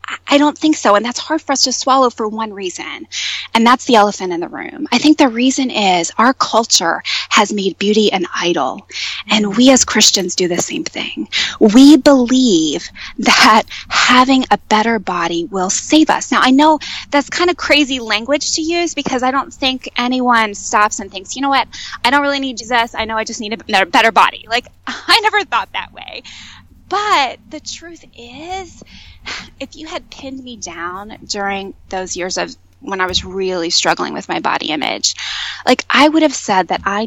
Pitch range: 195-270 Hz